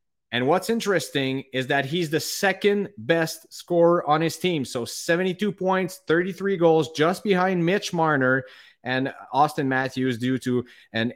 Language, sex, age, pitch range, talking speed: English, male, 30-49, 130-170 Hz, 150 wpm